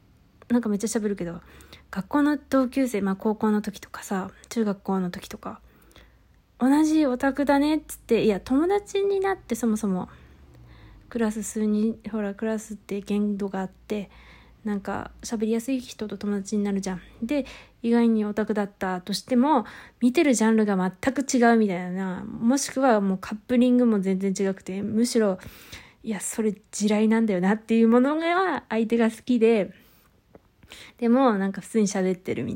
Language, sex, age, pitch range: Japanese, female, 20-39, 210-255 Hz